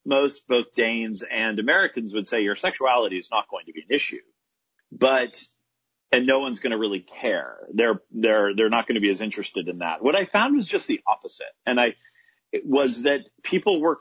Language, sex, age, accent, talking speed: English, male, 40-59, American, 210 wpm